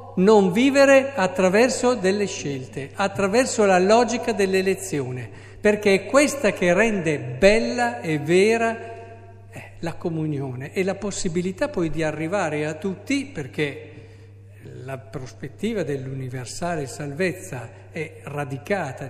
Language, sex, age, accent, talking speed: Italian, male, 50-69, native, 105 wpm